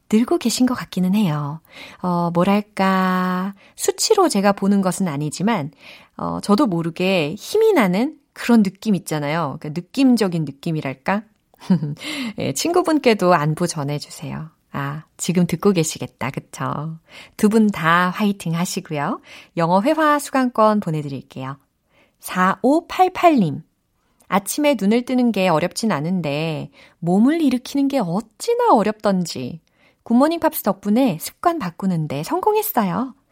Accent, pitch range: native, 160-240 Hz